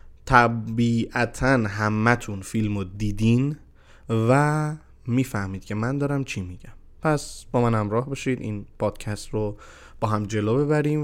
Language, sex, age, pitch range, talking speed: Persian, male, 20-39, 105-135 Hz, 135 wpm